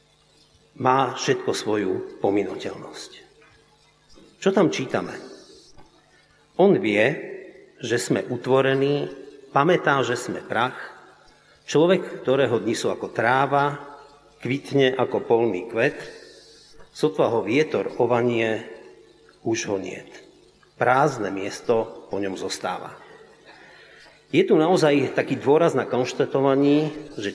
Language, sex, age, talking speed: Slovak, male, 50-69, 100 wpm